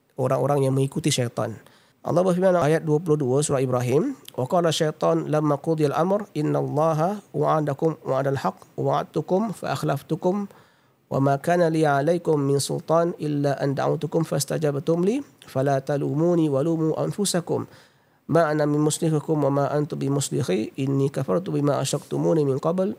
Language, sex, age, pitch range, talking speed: Malay, male, 50-69, 140-170 Hz, 135 wpm